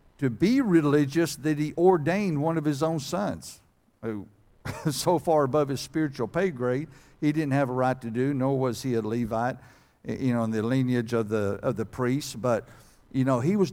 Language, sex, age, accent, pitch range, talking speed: English, male, 60-79, American, 115-150 Hz, 200 wpm